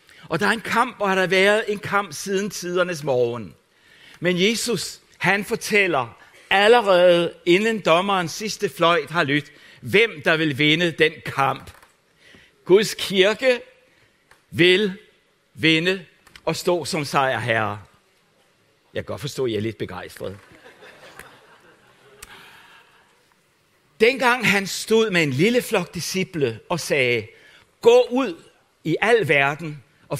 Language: Danish